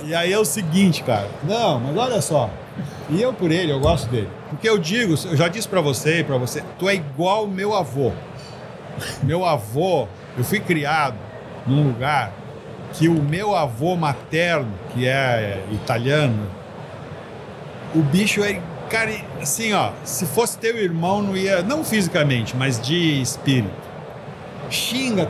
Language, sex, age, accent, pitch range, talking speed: Portuguese, male, 50-69, Brazilian, 140-185 Hz, 155 wpm